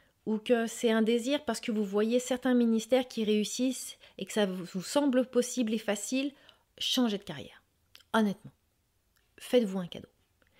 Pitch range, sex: 165-220 Hz, female